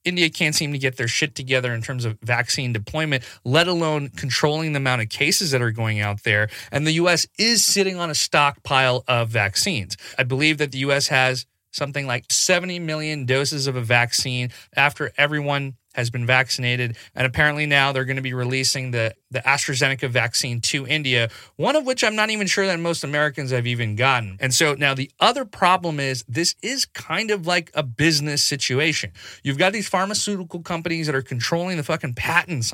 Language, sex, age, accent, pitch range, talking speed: English, male, 30-49, American, 125-155 Hz, 195 wpm